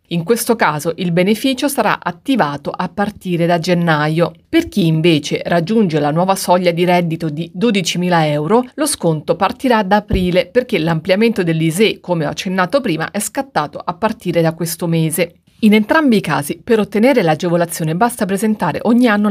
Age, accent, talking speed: 30-49, native, 165 wpm